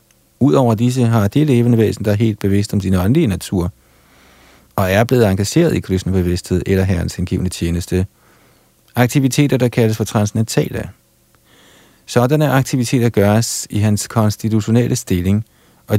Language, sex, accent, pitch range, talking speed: Danish, male, native, 100-120 Hz, 145 wpm